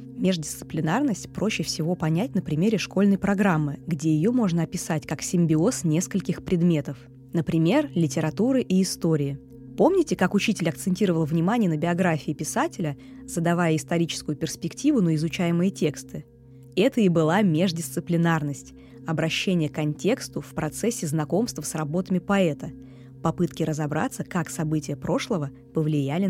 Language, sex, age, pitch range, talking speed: Russian, female, 20-39, 150-190 Hz, 120 wpm